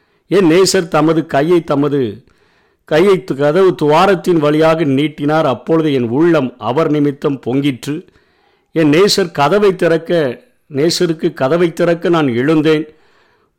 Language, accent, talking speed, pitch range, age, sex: Tamil, native, 110 wpm, 135-165 Hz, 50-69, male